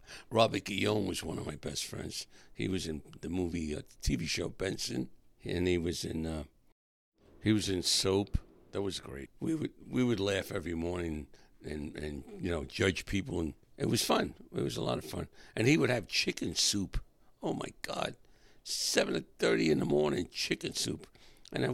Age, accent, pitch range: 60-79, American, 80-105 Hz